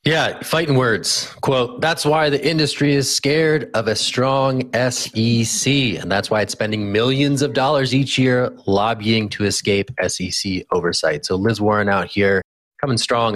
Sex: male